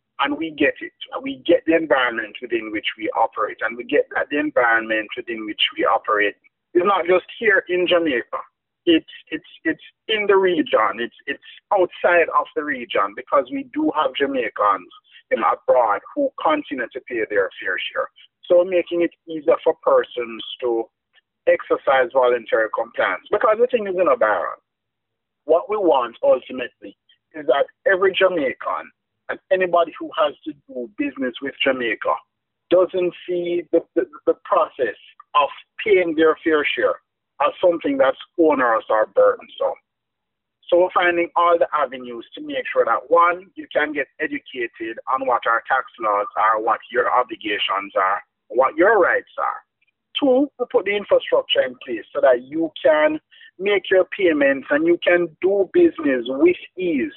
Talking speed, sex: 165 wpm, male